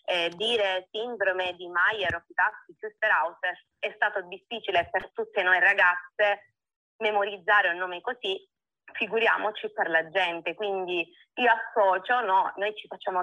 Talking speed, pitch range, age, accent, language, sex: 130 wpm, 175-220 Hz, 20-39, native, Italian, female